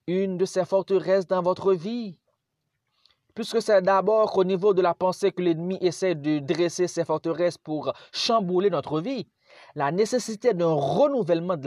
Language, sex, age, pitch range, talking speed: French, male, 30-49, 155-205 Hz, 160 wpm